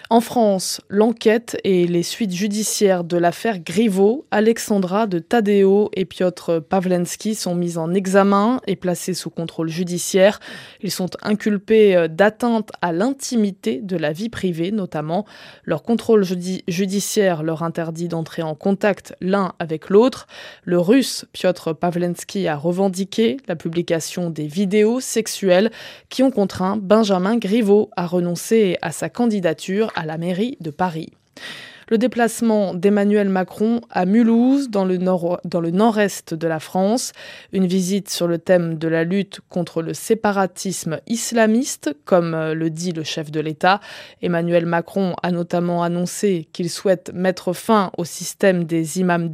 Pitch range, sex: 175-215 Hz, female